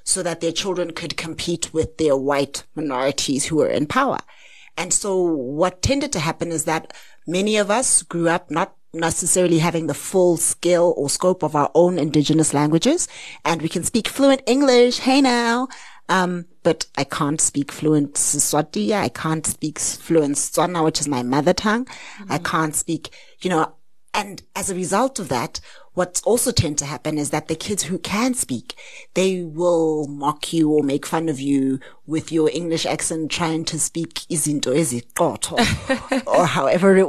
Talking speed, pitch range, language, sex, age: 185 wpm, 155-195 Hz, English, female, 30-49